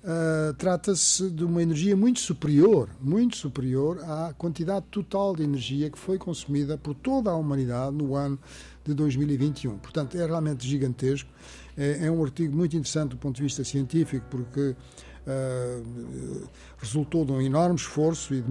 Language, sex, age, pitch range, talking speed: Portuguese, male, 60-79, 130-170 Hz, 160 wpm